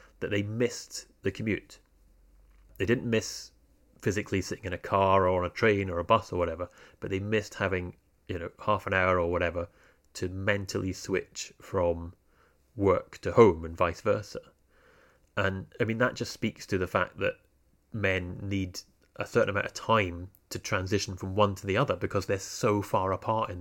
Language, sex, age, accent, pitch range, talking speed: English, male, 30-49, British, 90-120 Hz, 185 wpm